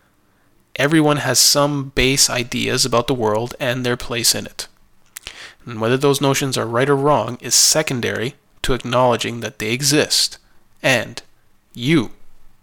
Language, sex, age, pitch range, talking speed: English, male, 20-39, 115-140 Hz, 145 wpm